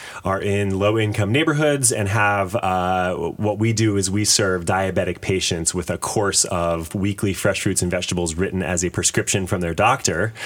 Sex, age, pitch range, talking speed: male, 20-39, 85-105 Hz, 180 wpm